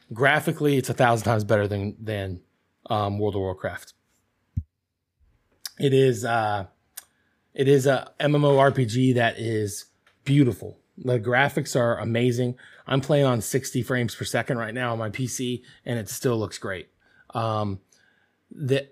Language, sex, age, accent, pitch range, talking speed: English, male, 20-39, American, 110-130 Hz, 145 wpm